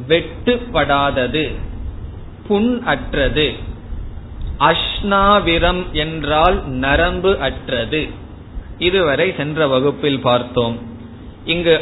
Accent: native